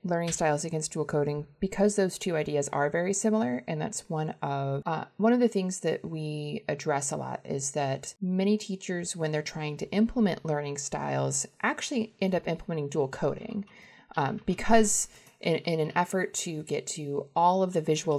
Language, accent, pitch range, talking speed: English, American, 145-200 Hz, 185 wpm